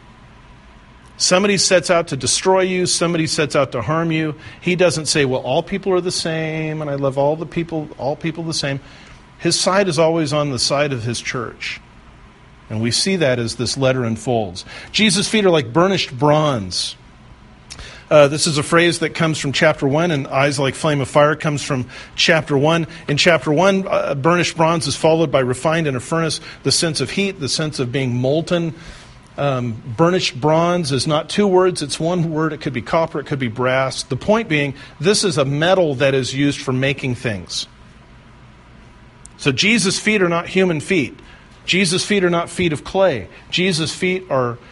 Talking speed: 195 wpm